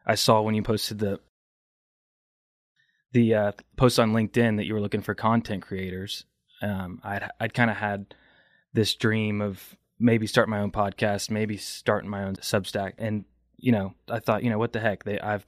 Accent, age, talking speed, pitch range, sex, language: American, 20-39, 185 wpm, 100-110 Hz, male, English